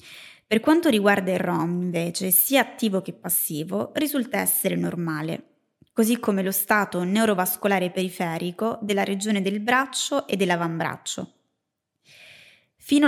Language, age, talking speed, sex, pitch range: Italian, 20-39, 120 wpm, female, 185-235 Hz